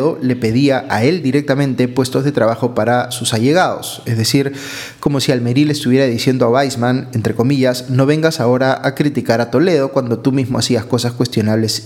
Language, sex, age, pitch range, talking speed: Spanish, male, 30-49, 115-140 Hz, 180 wpm